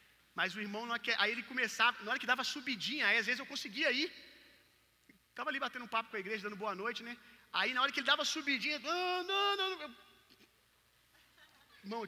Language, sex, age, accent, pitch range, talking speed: Gujarati, male, 30-49, Brazilian, 170-225 Hz, 215 wpm